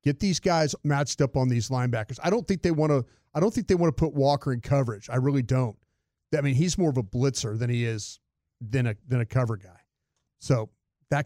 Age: 40-59